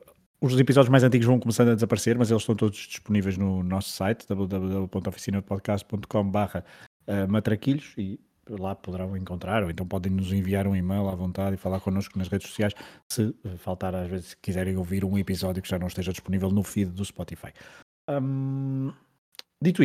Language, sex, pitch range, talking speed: Portuguese, male, 95-115 Hz, 170 wpm